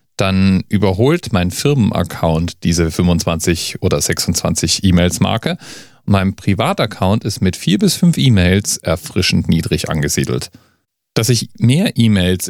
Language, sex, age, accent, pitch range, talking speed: German, male, 40-59, German, 90-120 Hz, 115 wpm